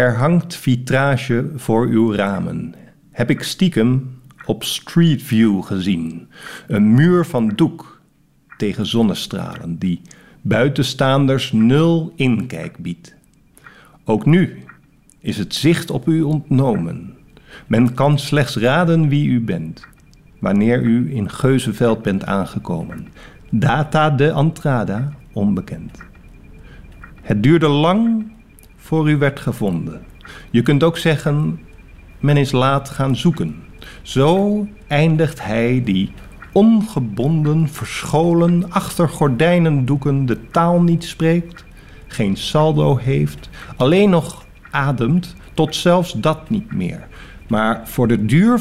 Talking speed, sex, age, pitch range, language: 115 wpm, male, 50-69, 115-165 Hz, Dutch